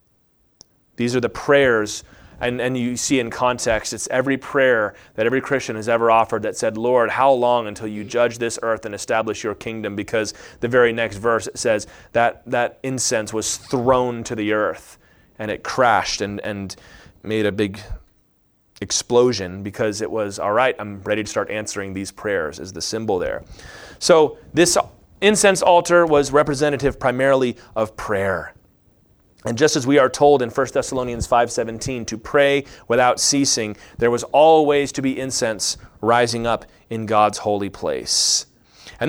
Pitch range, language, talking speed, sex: 110-160 Hz, English, 165 wpm, male